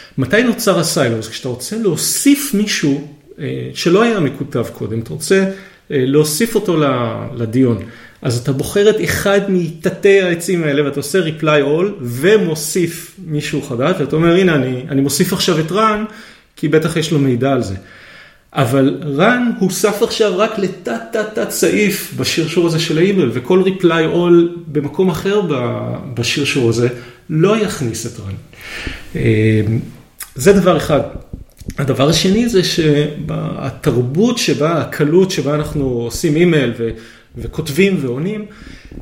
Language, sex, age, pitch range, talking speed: Hebrew, male, 30-49, 125-180 Hz, 135 wpm